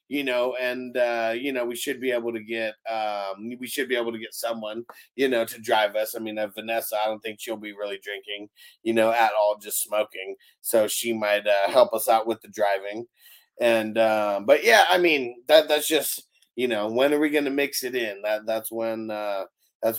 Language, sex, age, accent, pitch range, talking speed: English, male, 30-49, American, 105-125 Hz, 230 wpm